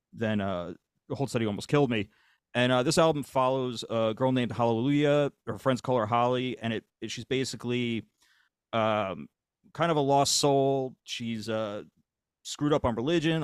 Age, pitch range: 30-49, 110-135 Hz